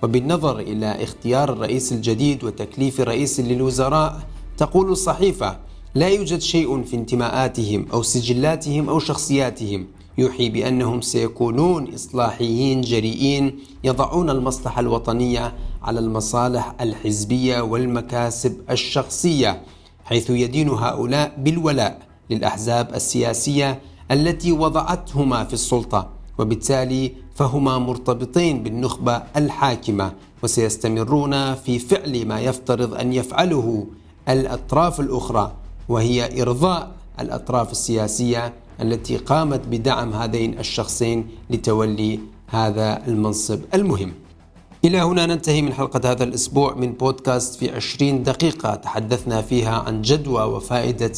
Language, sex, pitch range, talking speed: Arabic, male, 110-135 Hz, 100 wpm